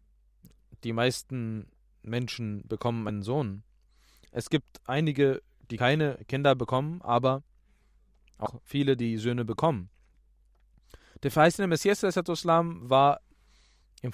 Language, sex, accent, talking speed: German, male, German, 100 wpm